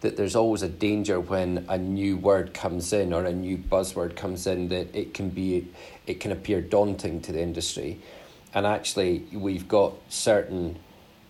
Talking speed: 175 wpm